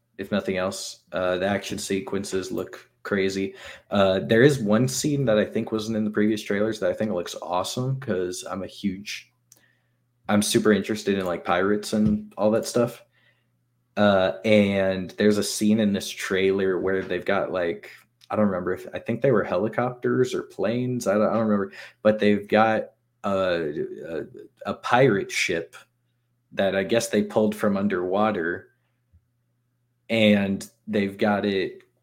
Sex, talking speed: male, 165 wpm